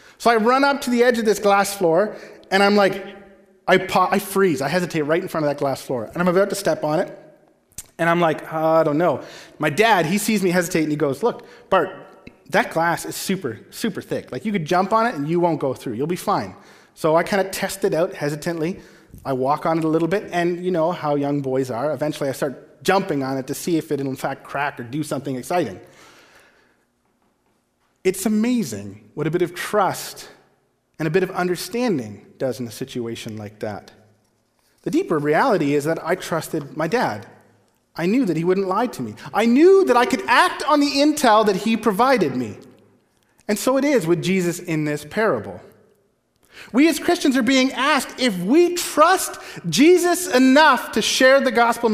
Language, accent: English, American